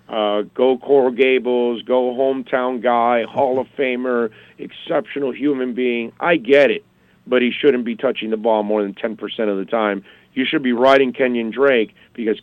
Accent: American